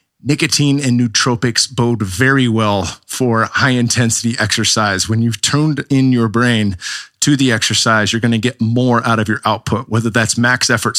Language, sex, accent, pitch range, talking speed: English, male, American, 115-135 Hz, 170 wpm